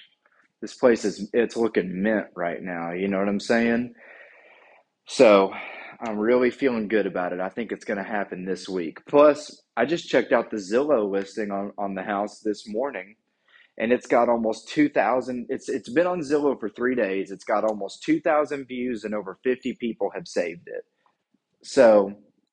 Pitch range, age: 105-130 Hz, 30-49